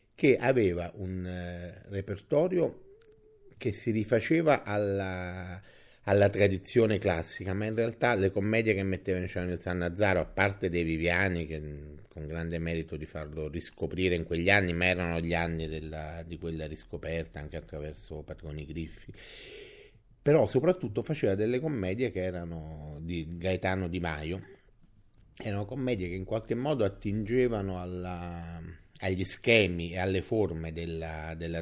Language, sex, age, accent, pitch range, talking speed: Italian, male, 30-49, native, 85-105 Hz, 145 wpm